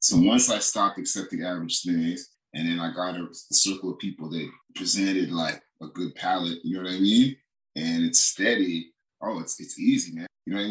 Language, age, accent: English, 30-49, American